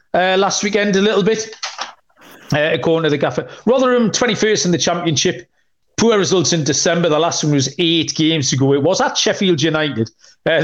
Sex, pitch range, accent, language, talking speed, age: male, 150-200 Hz, British, English, 190 wpm, 40-59